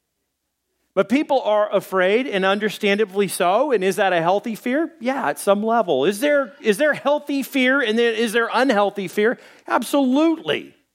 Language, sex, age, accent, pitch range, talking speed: English, male, 40-59, American, 150-230 Hz, 165 wpm